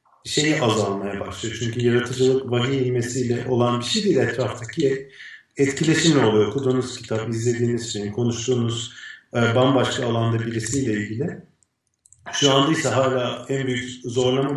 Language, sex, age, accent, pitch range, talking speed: Turkish, male, 40-59, native, 120-135 Hz, 120 wpm